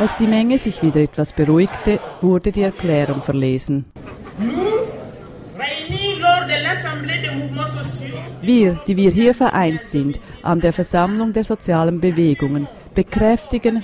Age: 40-59